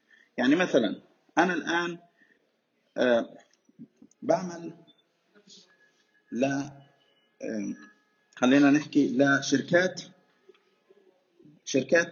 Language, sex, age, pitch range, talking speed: Arabic, male, 30-49, 120-185 Hz, 60 wpm